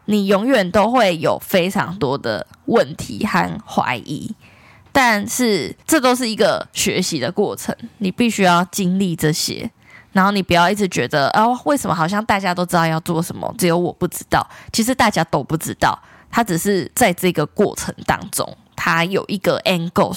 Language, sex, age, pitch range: Chinese, female, 10-29, 170-210 Hz